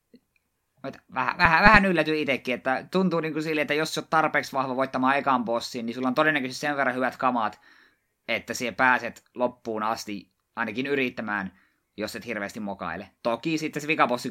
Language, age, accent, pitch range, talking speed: Finnish, 20-39, native, 110-140 Hz, 175 wpm